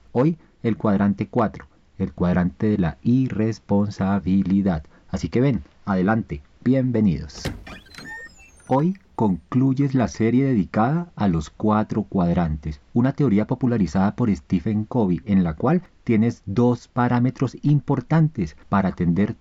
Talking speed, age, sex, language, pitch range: 120 wpm, 40-59, male, Spanish, 90-125 Hz